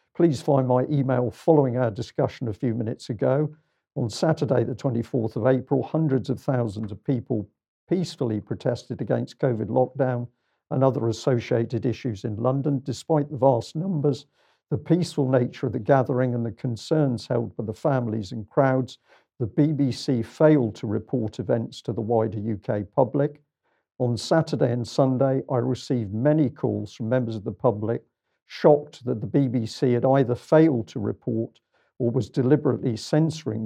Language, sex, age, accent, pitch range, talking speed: English, male, 50-69, British, 115-140 Hz, 160 wpm